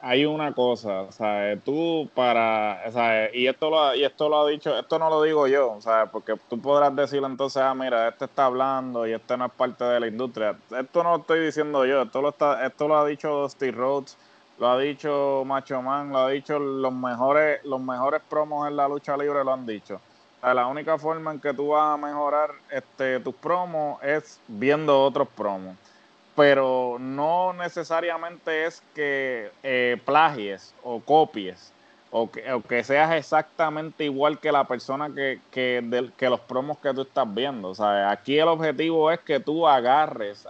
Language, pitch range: Spanish, 120-150 Hz